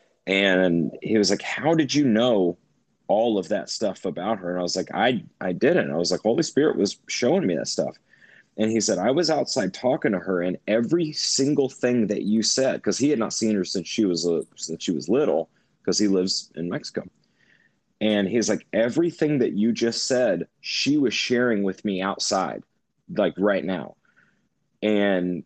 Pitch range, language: 95-125 Hz, English